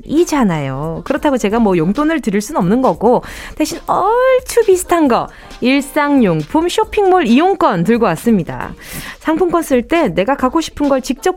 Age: 20-39